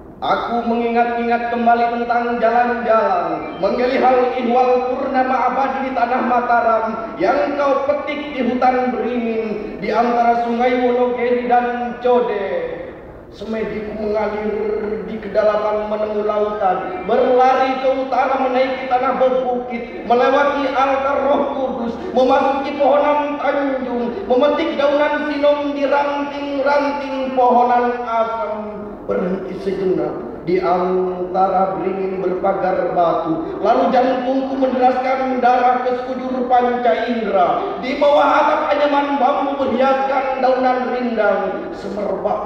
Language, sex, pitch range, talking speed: Indonesian, male, 190-260 Hz, 105 wpm